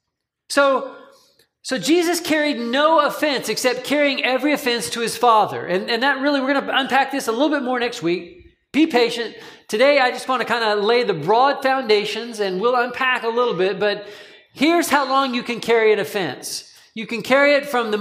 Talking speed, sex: 205 wpm, male